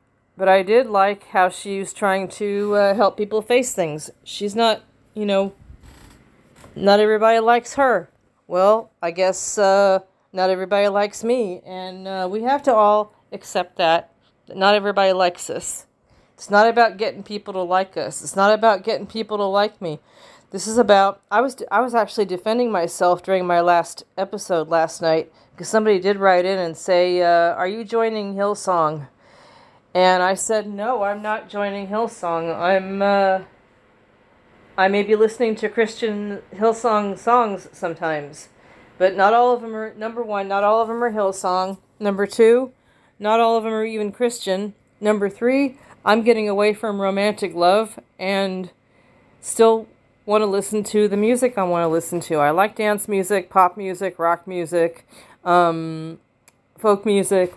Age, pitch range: 40-59, 180-215 Hz